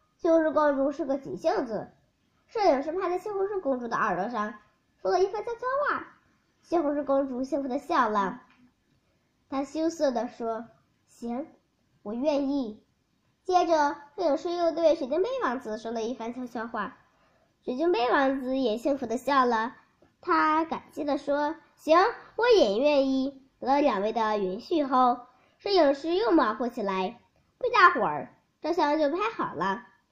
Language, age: Chinese, 10-29